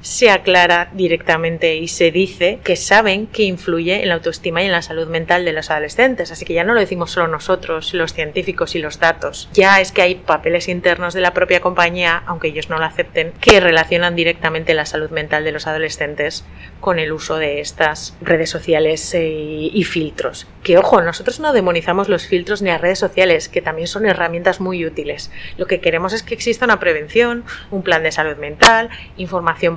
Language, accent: English, Spanish